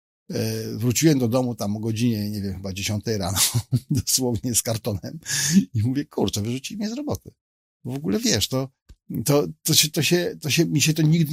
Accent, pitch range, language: native, 115-155 Hz, Polish